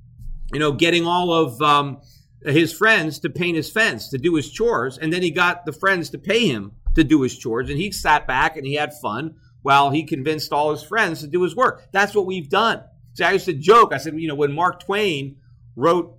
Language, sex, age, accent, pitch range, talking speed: English, male, 40-59, American, 130-170 Hz, 235 wpm